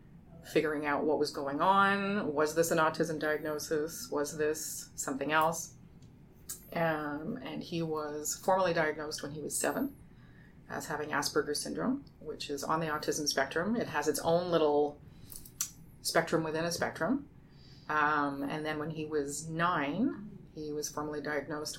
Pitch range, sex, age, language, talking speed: 150-170 Hz, female, 30-49, English, 150 wpm